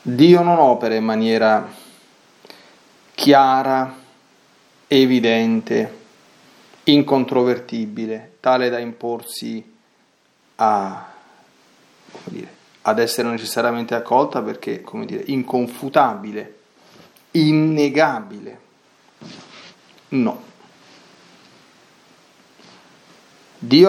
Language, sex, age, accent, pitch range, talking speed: Italian, male, 30-49, native, 115-140 Hz, 55 wpm